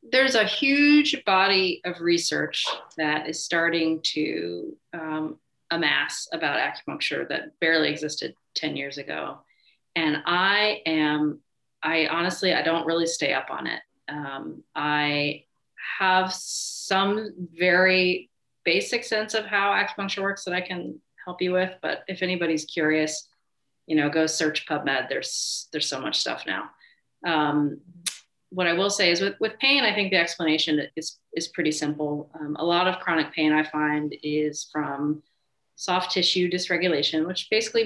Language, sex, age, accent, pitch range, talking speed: English, female, 30-49, American, 150-180 Hz, 150 wpm